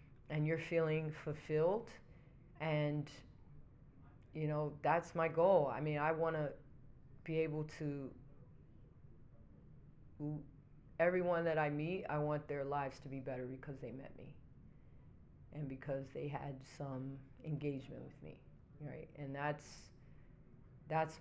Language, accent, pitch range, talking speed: English, American, 140-160 Hz, 125 wpm